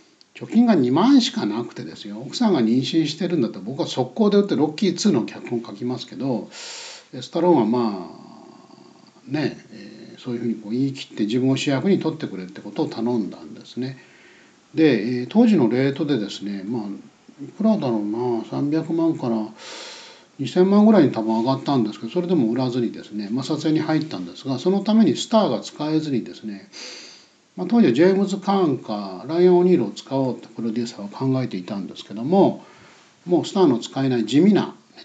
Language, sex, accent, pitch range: Japanese, male, native, 120-175 Hz